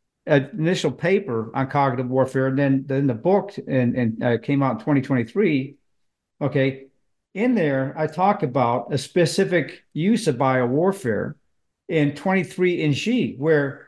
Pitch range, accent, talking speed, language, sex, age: 135-180 Hz, American, 145 wpm, English, male, 50-69